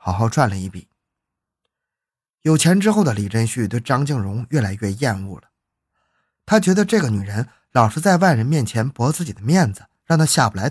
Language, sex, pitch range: Chinese, male, 105-150 Hz